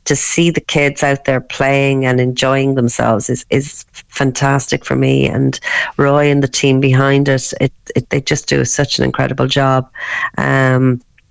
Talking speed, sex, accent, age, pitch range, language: 170 wpm, female, Irish, 40-59, 135-160 Hz, English